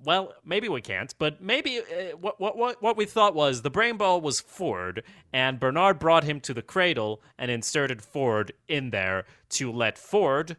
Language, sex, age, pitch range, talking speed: English, male, 30-49, 115-150 Hz, 185 wpm